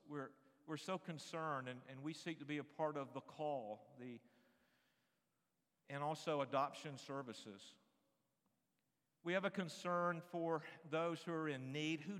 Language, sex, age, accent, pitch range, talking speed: English, male, 50-69, American, 125-160 Hz, 150 wpm